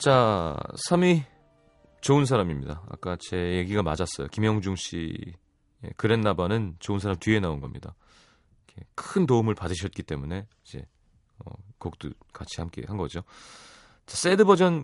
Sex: male